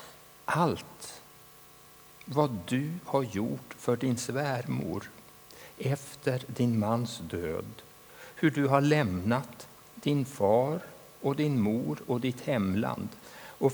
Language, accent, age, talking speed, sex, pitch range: Swedish, Norwegian, 60-79, 110 wpm, male, 105-140 Hz